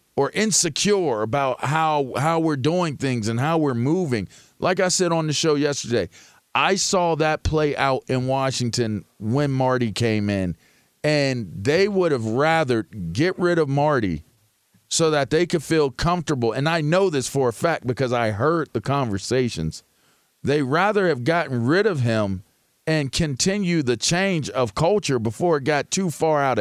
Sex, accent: male, American